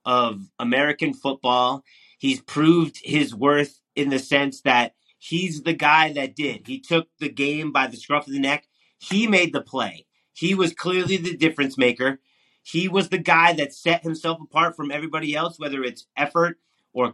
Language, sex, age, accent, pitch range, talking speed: English, male, 30-49, American, 150-185 Hz, 180 wpm